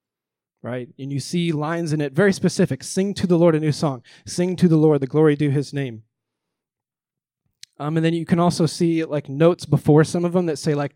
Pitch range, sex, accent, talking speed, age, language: 135-165 Hz, male, American, 225 wpm, 20-39, English